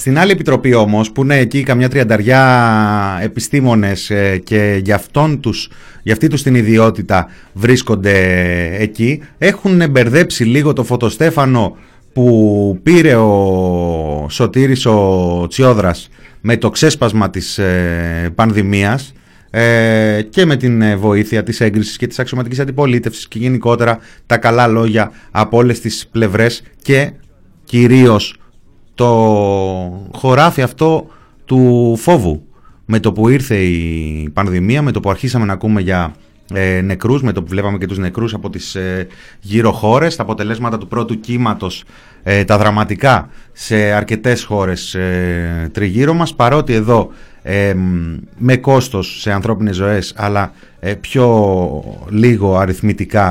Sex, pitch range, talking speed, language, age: male, 95-125 Hz, 130 wpm, Greek, 30-49